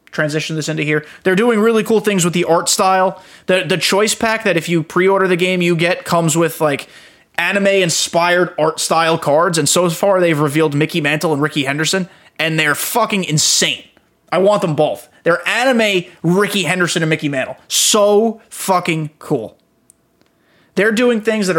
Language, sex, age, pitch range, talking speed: English, male, 20-39, 155-180 Hz, 180 wpm